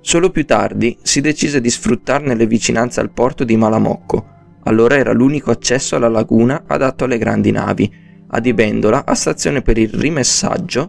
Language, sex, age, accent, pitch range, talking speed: Italian, male, 20-39, native, 115-145 Hz, 160 wpm